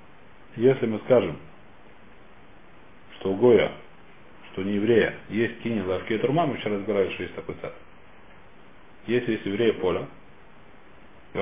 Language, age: Russian, 40-59